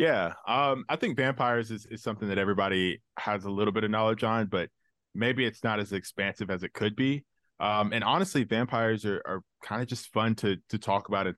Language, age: English, 20-39